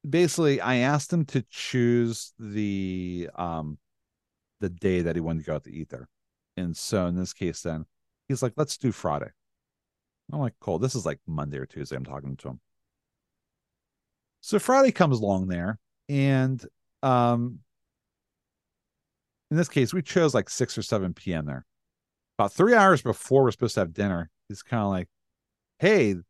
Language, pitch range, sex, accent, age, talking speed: English, 85-120 Hz, male, American, 40-59, 170 wpm